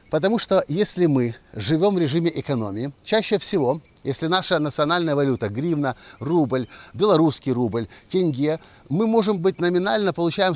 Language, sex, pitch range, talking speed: Russian, male, 130-175 Hz, 135 wpm